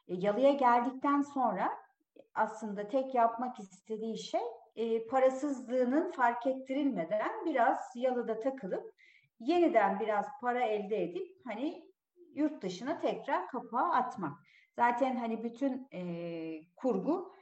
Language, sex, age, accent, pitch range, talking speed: Turkish, female, 50-69, native, 195-300 Hz, 100 wpm